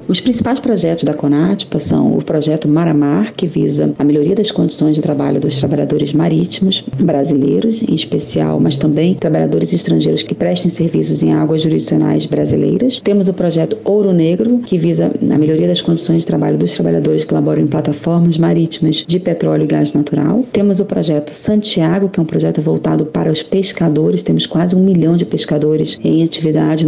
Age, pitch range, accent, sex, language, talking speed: 40-59, 150-190 Hz, Brazilian, female, Portuguese, 175 wpm